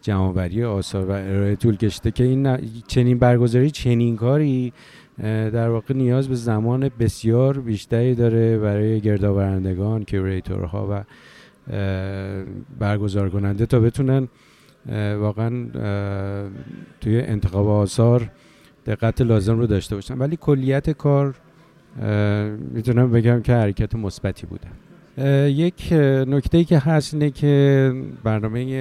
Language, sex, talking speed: Persian, male, 110 wpm